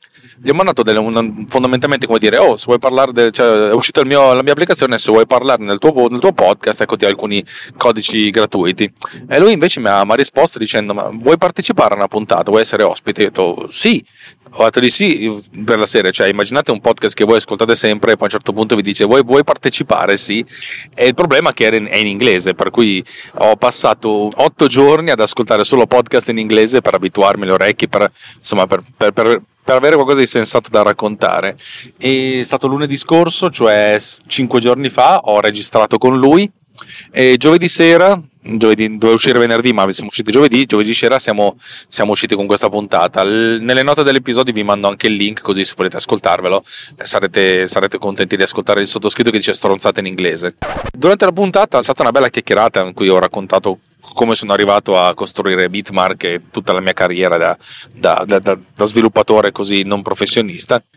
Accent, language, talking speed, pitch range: native, Italian, 200 wpm, 100-130 Hz